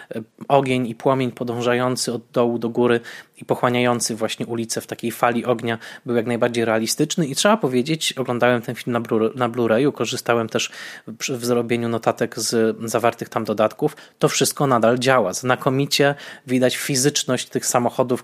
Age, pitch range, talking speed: 20-39, 120-145 Hz, 160 wpm